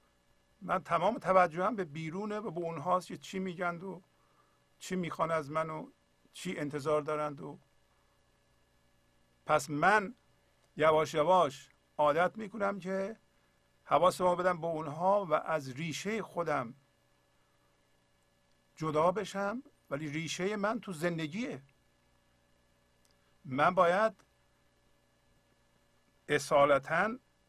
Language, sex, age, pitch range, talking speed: Persian, male, 50-69, 145-190 Hz, 105 wpm